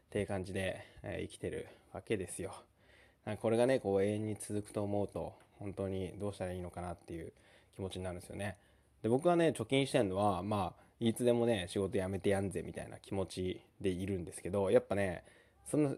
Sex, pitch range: male, 95-130 Hz